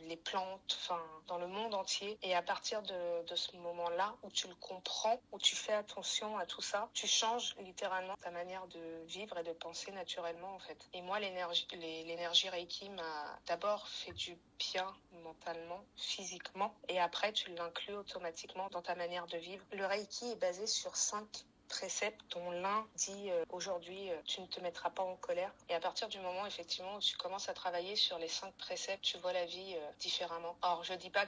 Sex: female